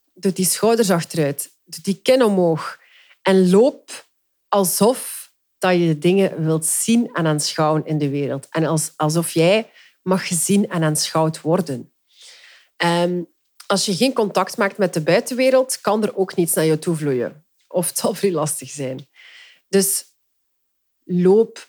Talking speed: 150 wpm